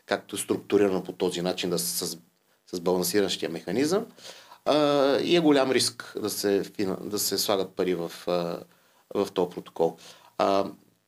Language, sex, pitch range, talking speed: Bulgarian, male, 95-140 Hz, 170 wpm